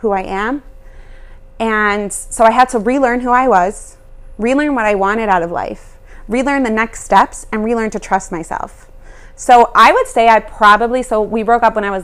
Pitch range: 200-260 Hz